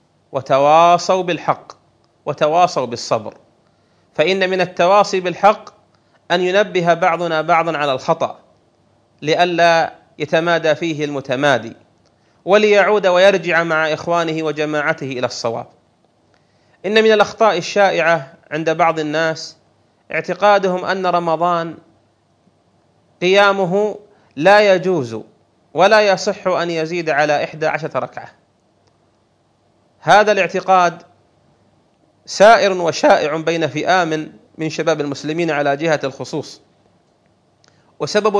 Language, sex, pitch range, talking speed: Arabic, male, 155-185 Hz, 90 wpm